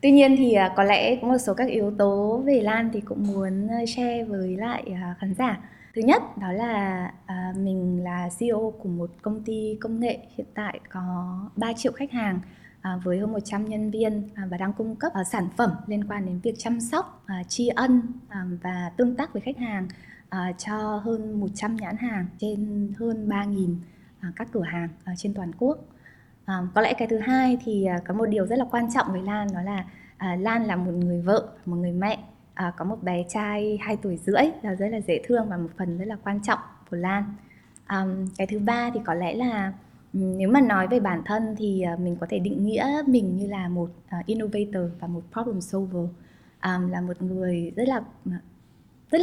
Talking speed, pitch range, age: 205 wpm, 185-225 Hz, 20-39